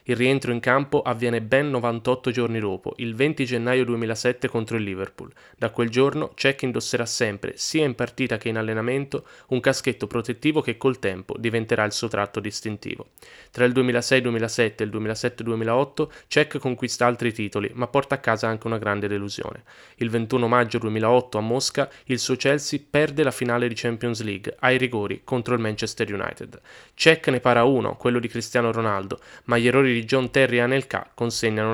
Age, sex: 20-39, male